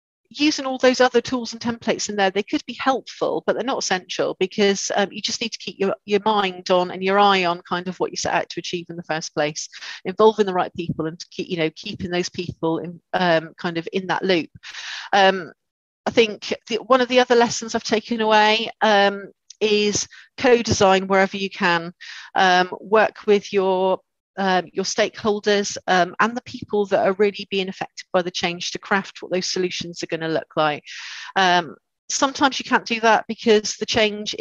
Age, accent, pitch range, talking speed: 40-59, British, 180-230 Hz, 210 wpm